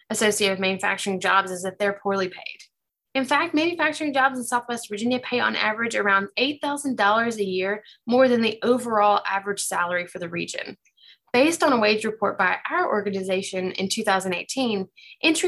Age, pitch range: 20-39, 200-255 Hz